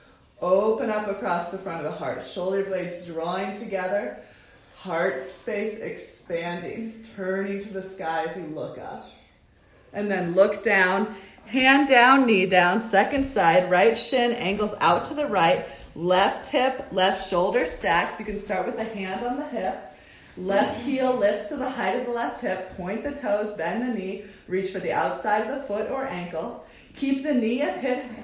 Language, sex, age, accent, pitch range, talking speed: English, female, 30-49, American, 185-235 Hz, 180 wpm